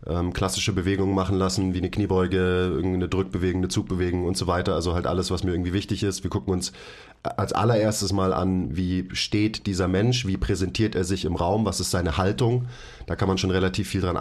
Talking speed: 210 wpm